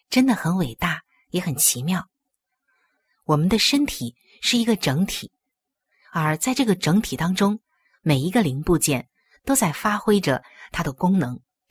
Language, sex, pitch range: Chinese, female, 150-245 Hz